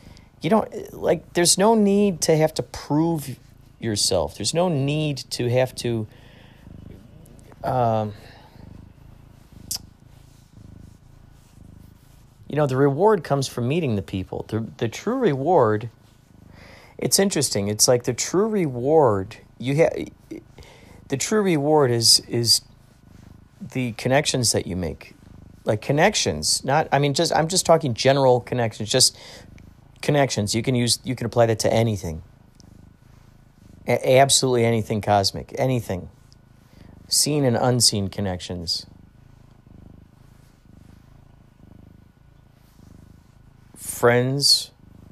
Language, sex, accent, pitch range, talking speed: English, male, American, 100-135 Hz, 110 wpm